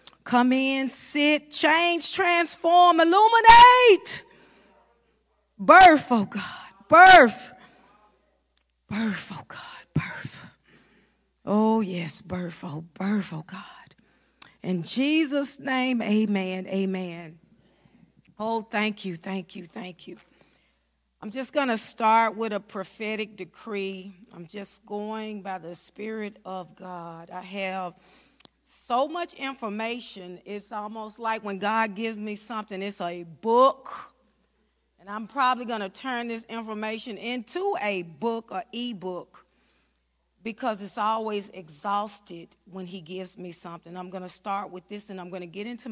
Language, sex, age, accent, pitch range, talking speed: English, female, 40-59, American, 185-245 Hz, 130 wpm